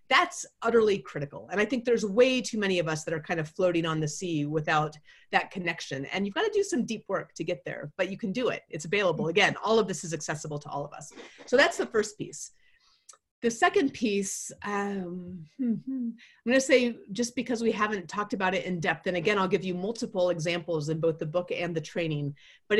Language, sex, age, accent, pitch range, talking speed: English, female, 30-49, American, 165-220 Hz, 230 wpm